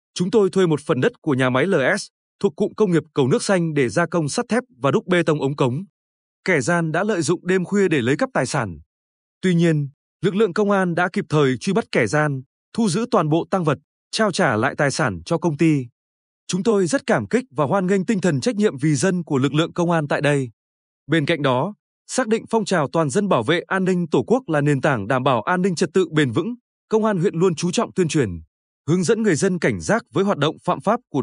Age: 20-39